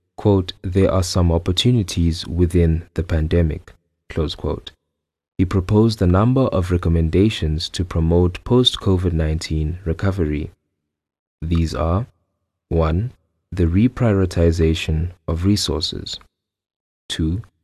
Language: English